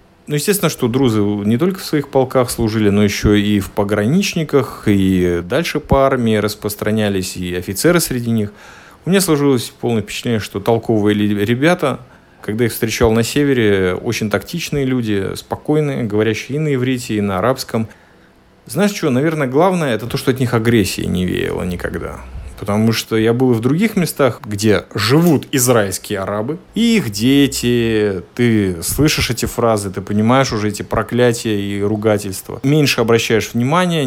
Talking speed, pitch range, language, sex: 155 wpm, 105-130 Hz, Russian, male